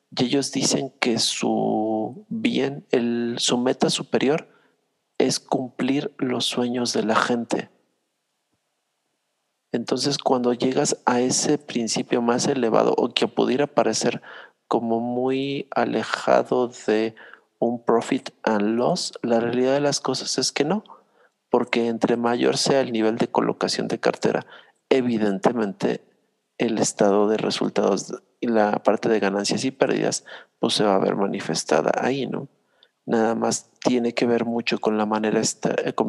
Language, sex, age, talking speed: Spanish, male, 50-69, 145 wpm